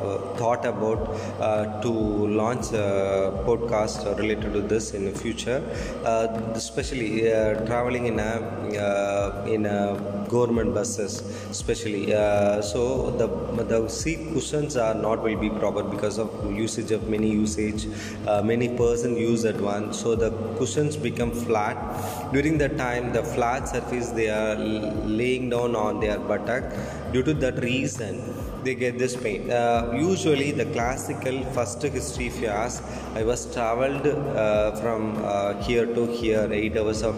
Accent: native